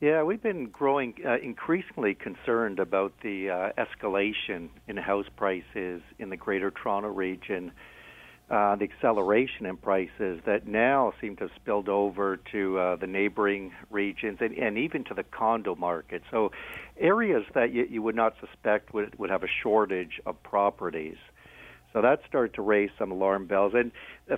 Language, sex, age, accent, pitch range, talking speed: English, male, 60-79, American, 95-115 Hz, 165 wpm